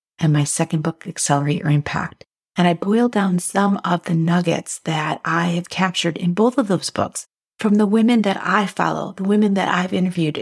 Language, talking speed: English, 200 wpm